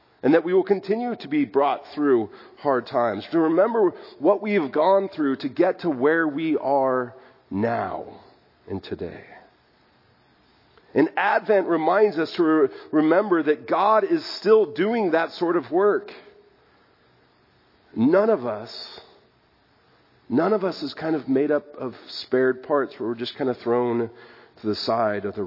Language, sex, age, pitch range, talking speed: English, male, 40-59, 115-170 Hz, 155 wpm